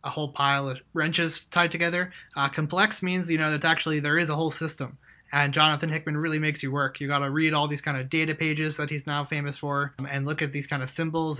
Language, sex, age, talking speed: English, male, 20-39, 260 wpm